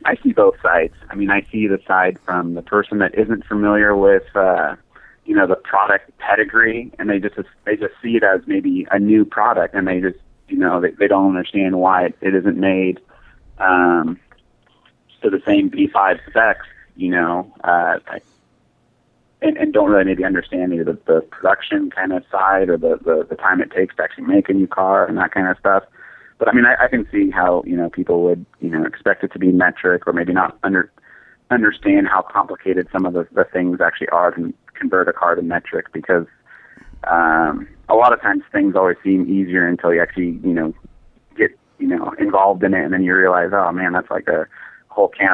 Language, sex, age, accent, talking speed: English, male, 30-49, American, 215 wpm